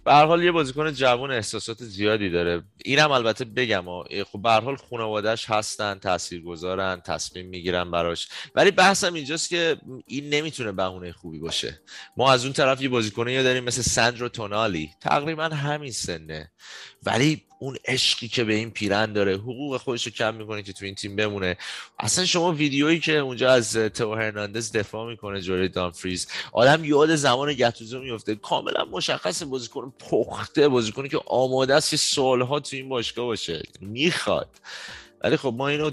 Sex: male